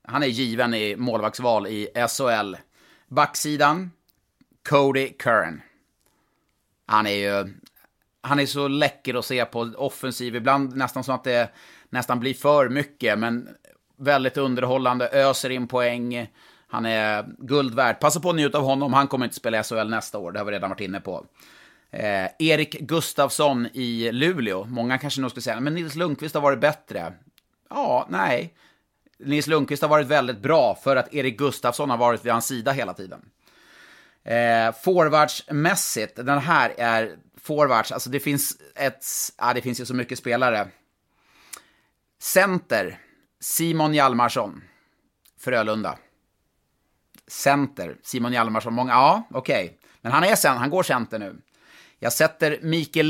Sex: male